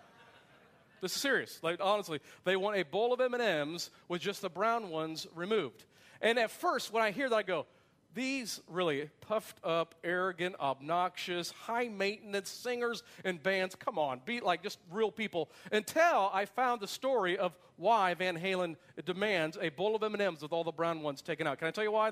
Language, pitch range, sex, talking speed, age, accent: English, 180-225 Hz, male, 185 wpm, 40-59, American